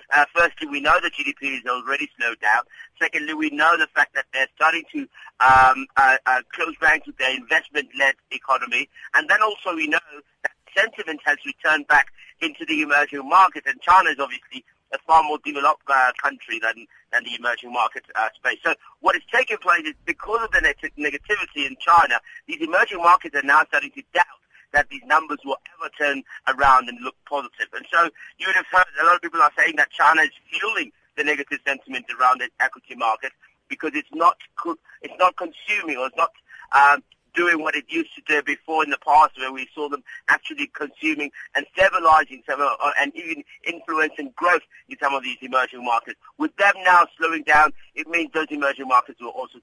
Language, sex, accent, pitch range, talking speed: English, male, British, 135-200 Hz, 200 wpm